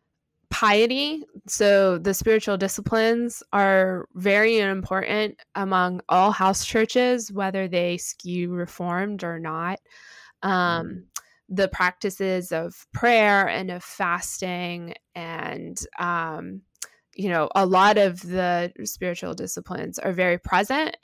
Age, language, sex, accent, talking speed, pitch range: 20-39, English, female, American, 110 wpm, 175-200 Hz